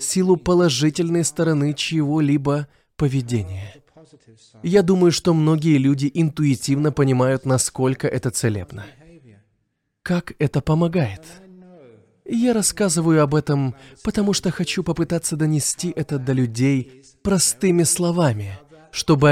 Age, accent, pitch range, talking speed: 20-39, native, 125-165 Hz, 105 wpm